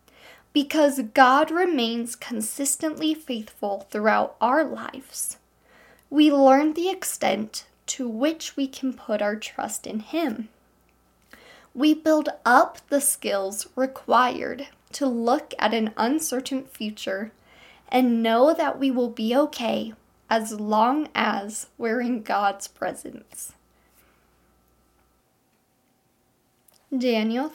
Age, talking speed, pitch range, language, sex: 10-29, 105 wpm, 215-280 Hz, English, female